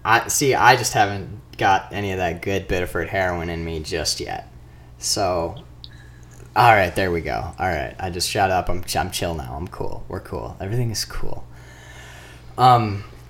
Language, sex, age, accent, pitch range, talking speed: English, male, 20-39, American, 80-105 Hz, 180 wpm